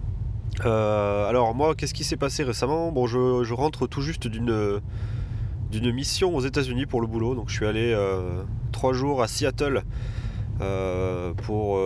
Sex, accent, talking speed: male, French, 165 wpm